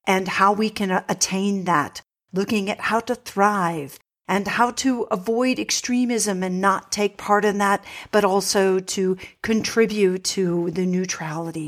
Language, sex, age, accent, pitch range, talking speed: English, female, 50-69, American, 195-235 Hz, 150 wpm